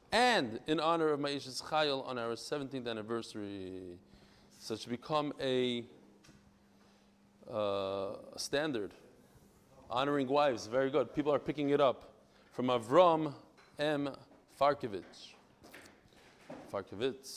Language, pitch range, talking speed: English, 130-165 Hz, 105 wpm